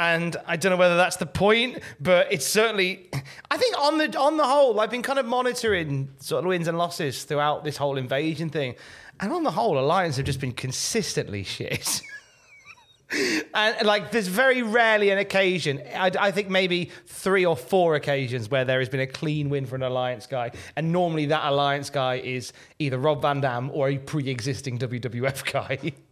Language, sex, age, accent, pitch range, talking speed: English, male, 30-49, British, 130-180 Hz, 195 wpm